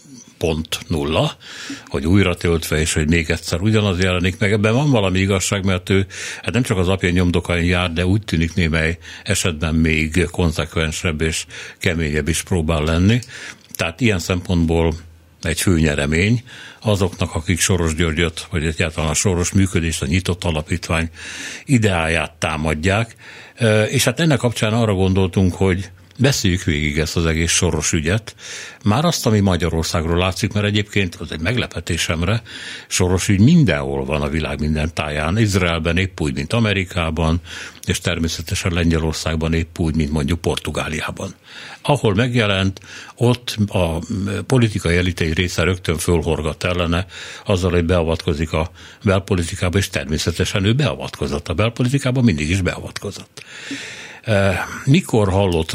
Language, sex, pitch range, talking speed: Hungarian, male, 80-100 Hz, 135 wpm